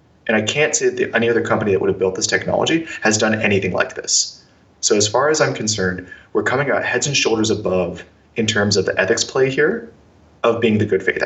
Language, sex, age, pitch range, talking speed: English, male, 20-39, 100-150 Hz, 235 wpm